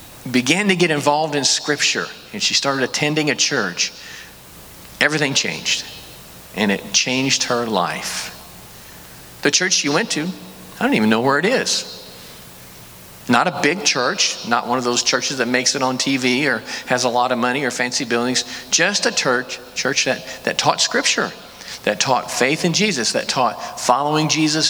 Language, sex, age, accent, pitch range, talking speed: English, male, 40-59, American, 120-155 Hz, 170 wpm